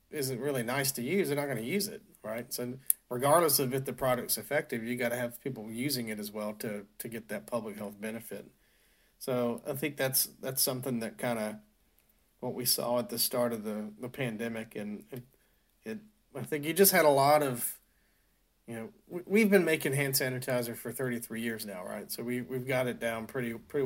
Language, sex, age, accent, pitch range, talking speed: English, male, 40-59, American, 110-130 Hz, 220 wpm